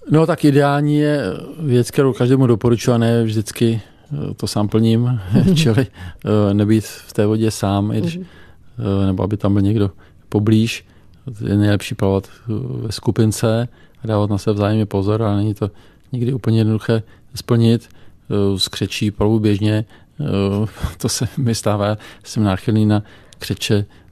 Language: Czech